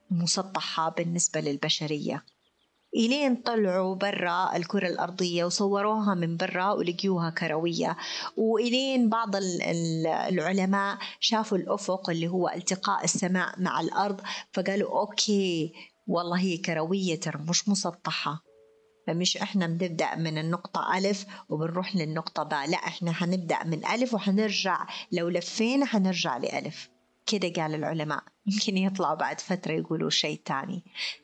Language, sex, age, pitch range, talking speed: Arabic, female, 30-49, 165-205 Hz, 115 wpm